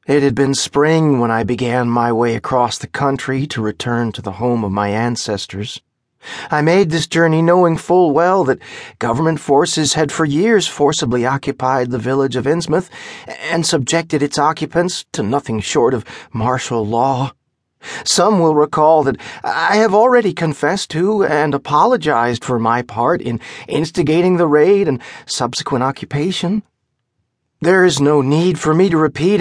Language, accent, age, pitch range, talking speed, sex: English, American, 40-59, 125-170 Hz, 160 wpm, male